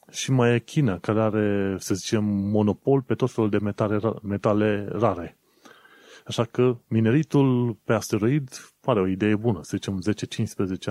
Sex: male